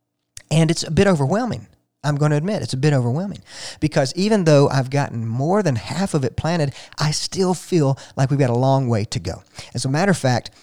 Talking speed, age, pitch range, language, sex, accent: 225 wpm, 40-59, 115-150 Hz, English, male, American